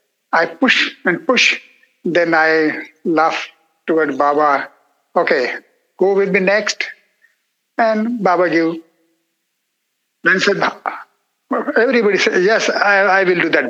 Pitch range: 165-240 Hz